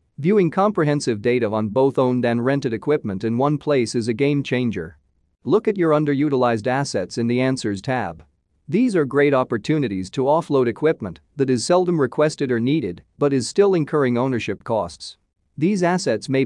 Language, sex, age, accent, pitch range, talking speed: English, male, 40-59, American, 115-150 Hz, 170 wpm